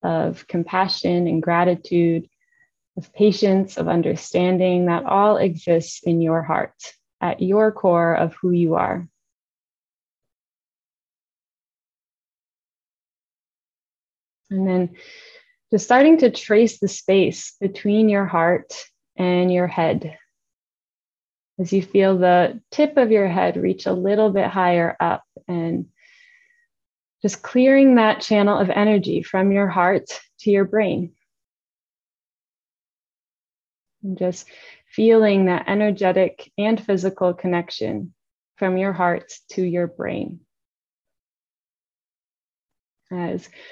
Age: 20-39